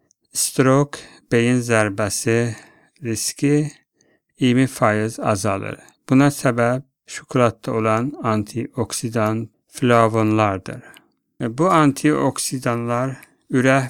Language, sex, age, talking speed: English, male, 60-79, 70 wpm